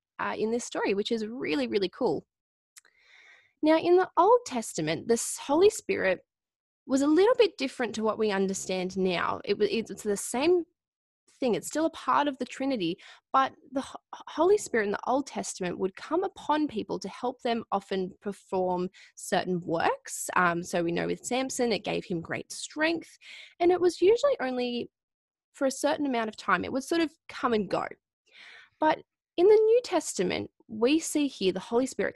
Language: English